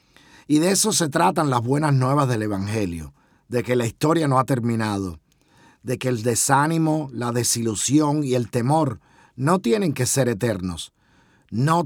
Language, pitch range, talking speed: Spanish, 120-160 Hz, 160 wpm